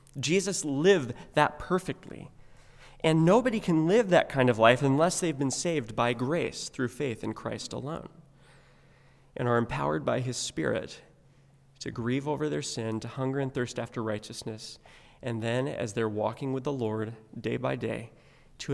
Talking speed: 165 wpm